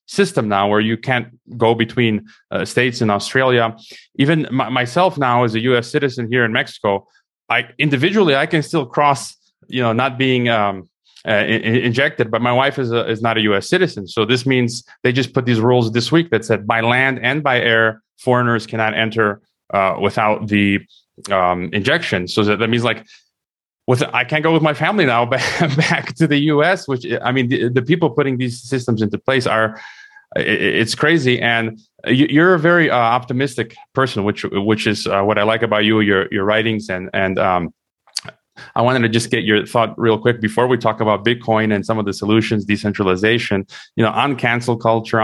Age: 30-49